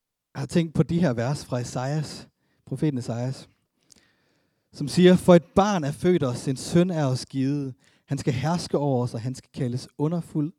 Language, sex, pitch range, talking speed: Danish, male, 120-150 Hz, 195 wpm